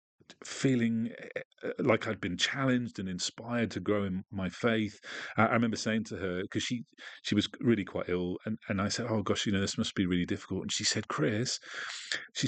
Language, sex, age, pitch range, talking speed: English, male, 40-59, 95-115 Hz, 200 wpm